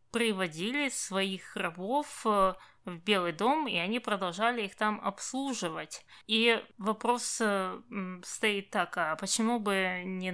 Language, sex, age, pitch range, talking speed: Russian, female, 20-39, 185-230 Hz, 115 wpm